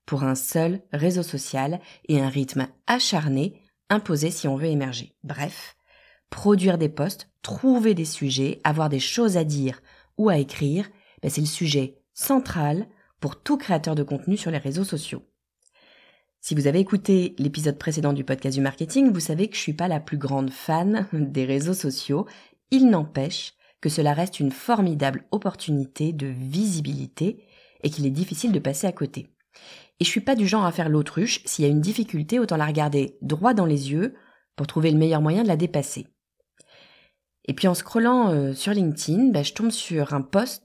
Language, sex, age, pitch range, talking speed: French, female, 30-49, 145-200 Hz, 185 wpm